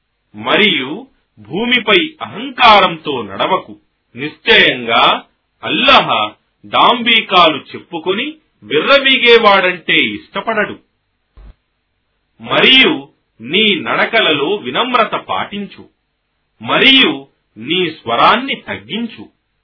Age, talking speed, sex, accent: 40-59, 35 wpm, male, native